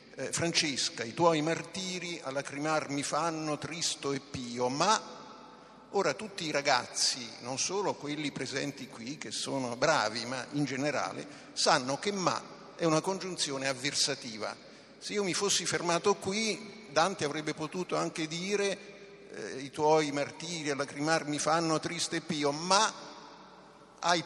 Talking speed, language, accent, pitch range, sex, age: 140 wpm, Italian, native, 140-180 Hz, male, 50-69